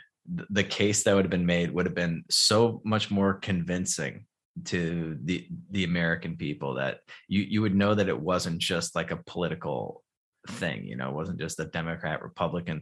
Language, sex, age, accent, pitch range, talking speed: English, male, 20-39, American, 85-100 Hz, 185 wpm